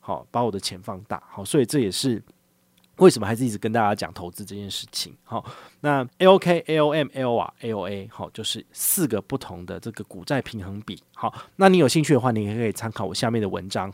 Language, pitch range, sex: Chinese, 100-140 Hz, male